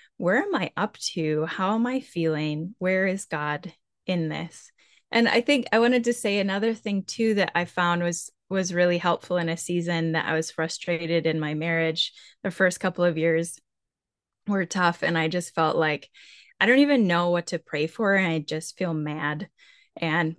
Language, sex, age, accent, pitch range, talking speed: English, female, 10-29, American, 165-210 Hz, 195 wpm